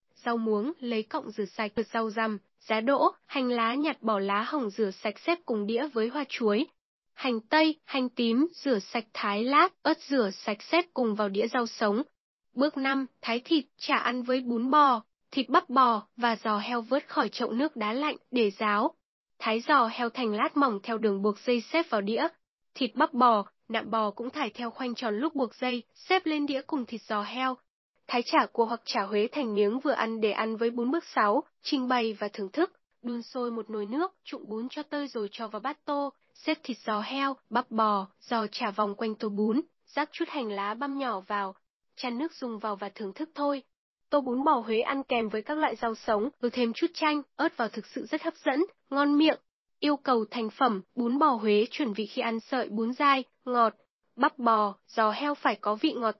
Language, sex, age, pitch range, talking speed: Vietnamese, female, 10-29, 220-285 Hz, 220 wpm